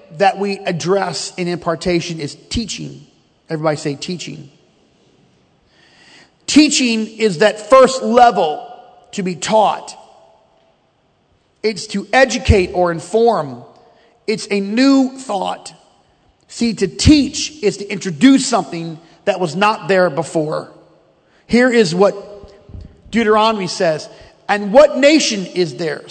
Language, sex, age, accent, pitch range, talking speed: English, male, 40-59, American, 170-225 Hz, 115 wpm